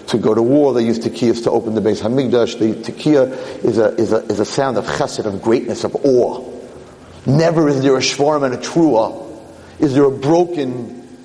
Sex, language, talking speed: male, English, 210 wpm